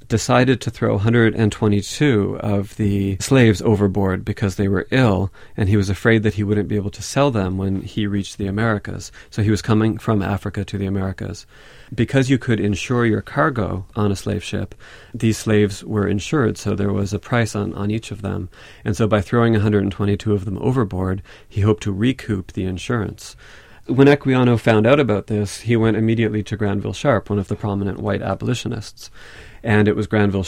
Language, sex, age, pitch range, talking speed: English, male, 40-59, 100-115 Hz, 195 wpm